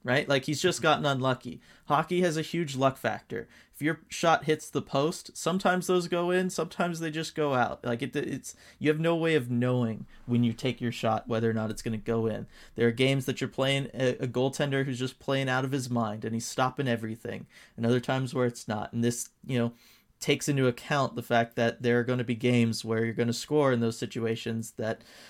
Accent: American